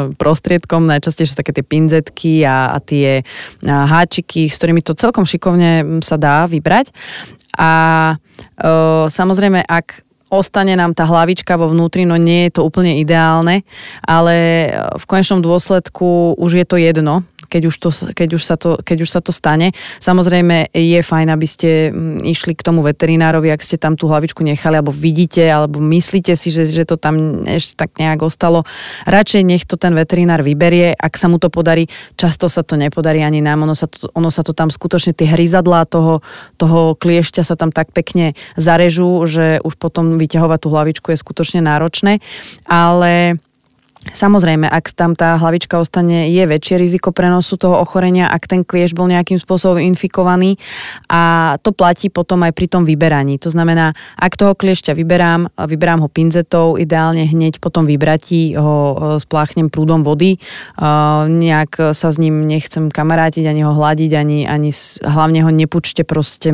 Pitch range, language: 155-175 Hz, Slovak